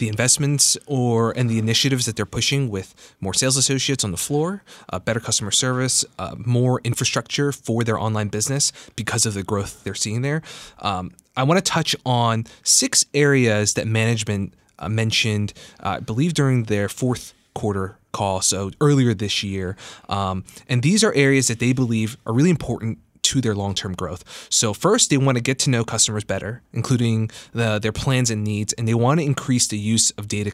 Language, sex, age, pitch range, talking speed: English, male, 20-39, 105-130 Hz, 190 wpm